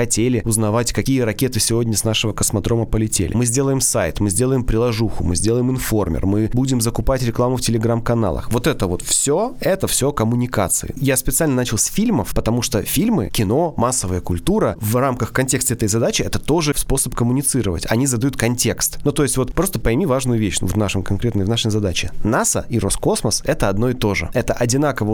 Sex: male